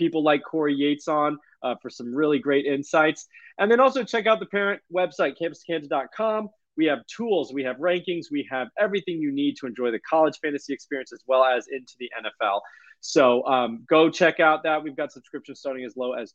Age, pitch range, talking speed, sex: 20-39, 135-185 Hz, 205 wpm, male